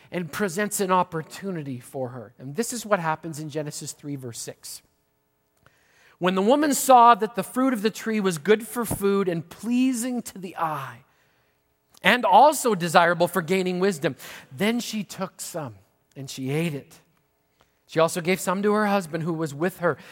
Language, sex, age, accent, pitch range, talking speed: English, male, 40-59, American, 160-225 Hz, 180 wpm